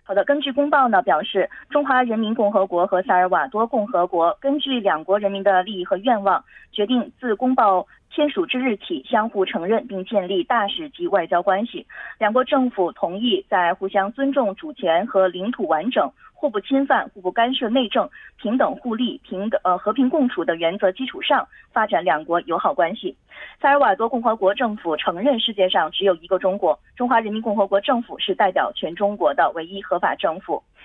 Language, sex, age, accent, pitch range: Korean, female, 20-39, Chinese, 190-270 Hz